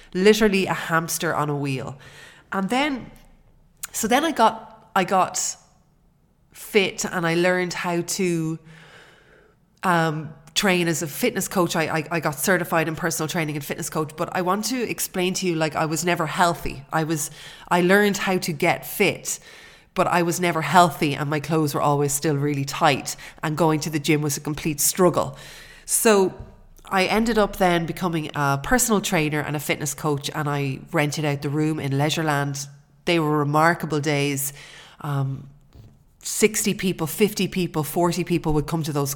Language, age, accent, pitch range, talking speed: English, 30-49, Irish, 150-180 Hz, 175 wpm